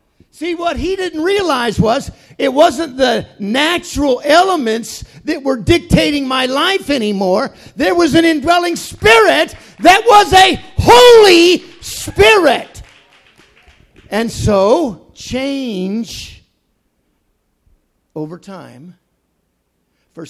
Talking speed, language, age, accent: 100 wpm, English, 50-69, American